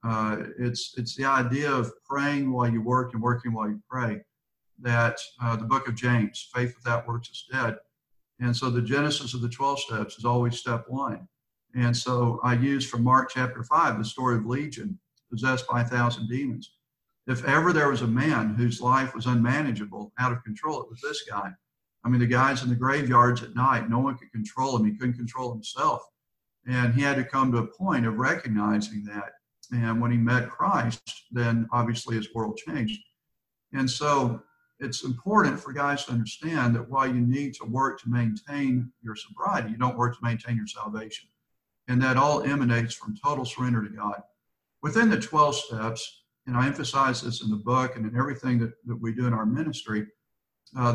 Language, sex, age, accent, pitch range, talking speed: English, male, 50-69, American, 115-135 Hz, 195 wpm